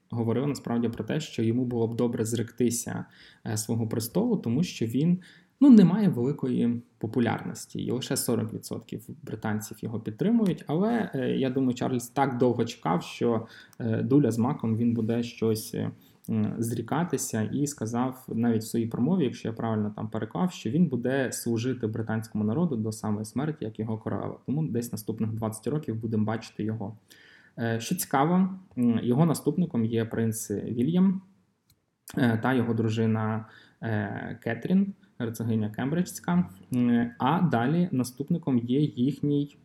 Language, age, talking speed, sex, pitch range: Ukrainian, 20-39, 135 wpm, male, 110-140 Hz